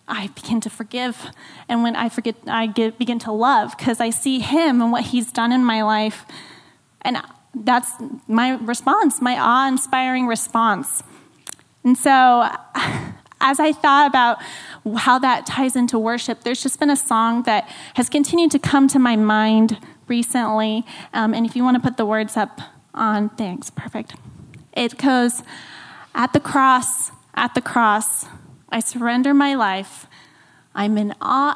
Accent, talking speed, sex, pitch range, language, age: American, 160 wpm, female, 220-260 Hz, English, 10-29